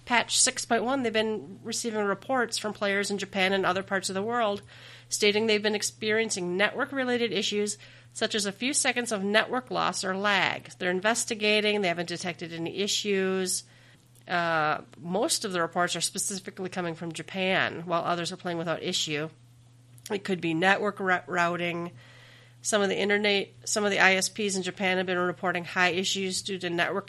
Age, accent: 40-59, American